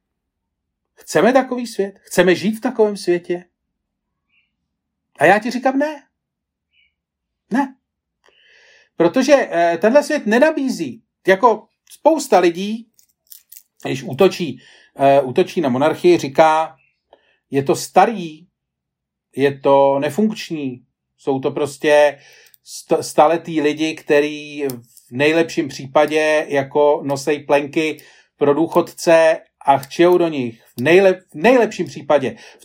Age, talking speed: 40-59, 105 wpm